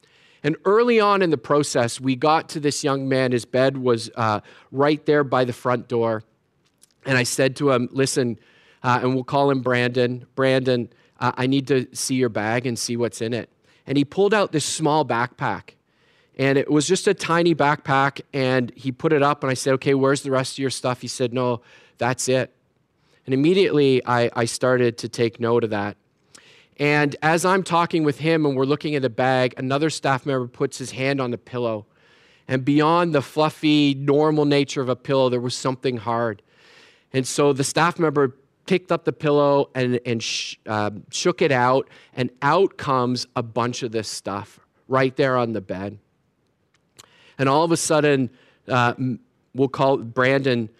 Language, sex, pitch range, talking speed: English, male, 125-145 Hz, 195 wpm